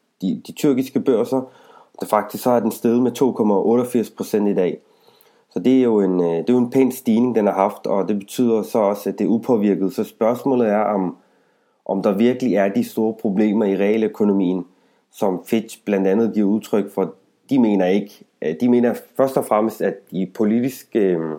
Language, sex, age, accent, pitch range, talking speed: Danish, male, 30-49, native, 100-120 Hz, 190 wpm